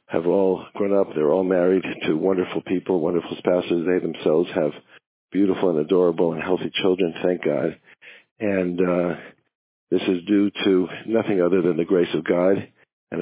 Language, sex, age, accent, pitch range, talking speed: English, male, 50-69, American, 90-100 Hz, 170 wpm